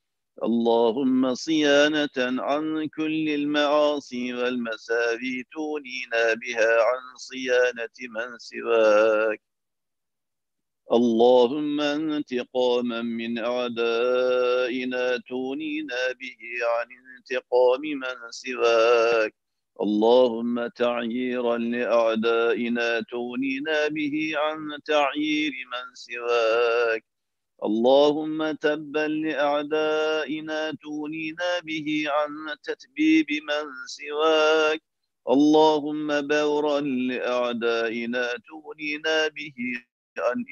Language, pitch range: Turkish, 115-150 Hz